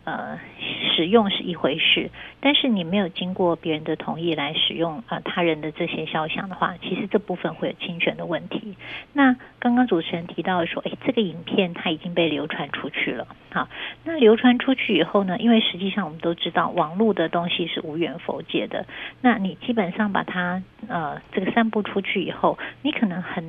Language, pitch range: Chinese, 165-210 Hz